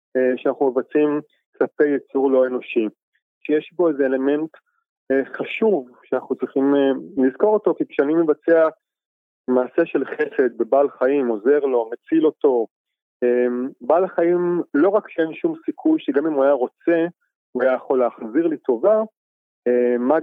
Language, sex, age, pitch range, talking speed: Hebrew, male, 20-39, 125-180 Hz, 135 wpm